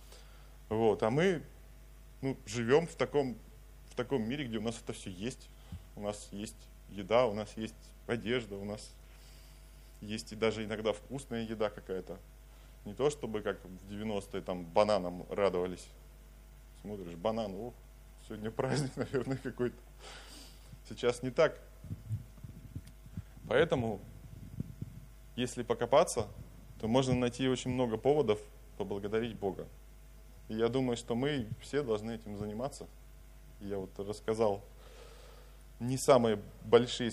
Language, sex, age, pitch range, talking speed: Russian, male, 20-39, 100-125 Hz, 125 wpm